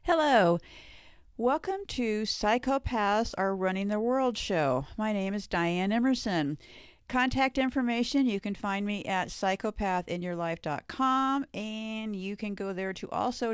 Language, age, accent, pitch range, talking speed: English, 50-69, American, 175-225 Hz, 130 wpm